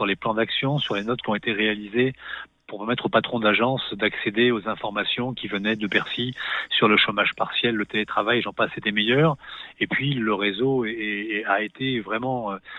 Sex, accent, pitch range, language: male, French, 105-130 Hz, French